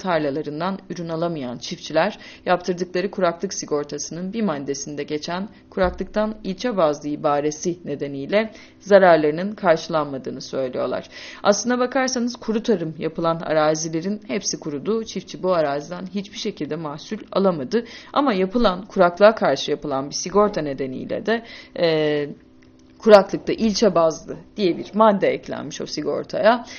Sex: female